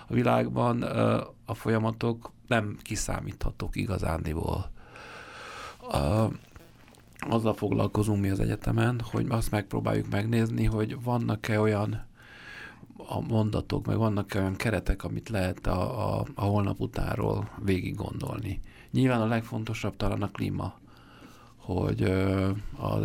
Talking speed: 105 wpm